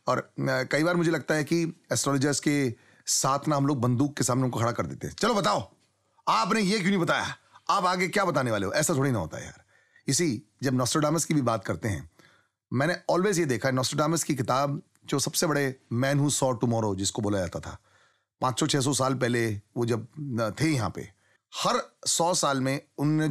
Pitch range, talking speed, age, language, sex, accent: 130-180 Hz, 205 wpm, 30-49, Hindi, male, native